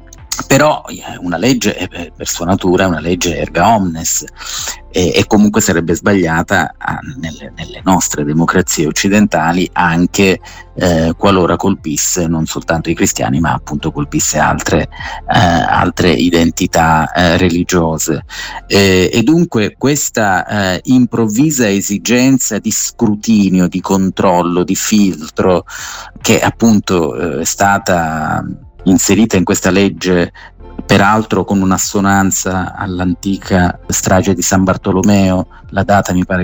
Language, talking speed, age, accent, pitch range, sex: Italian, 105 wpm, 30-49, native, 90-110 Hz, male